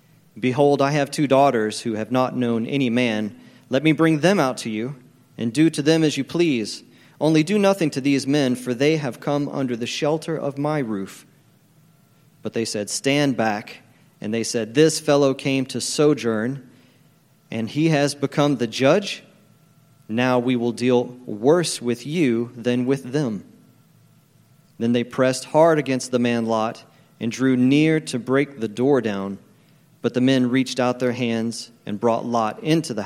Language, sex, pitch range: English, male, 120-150 Hz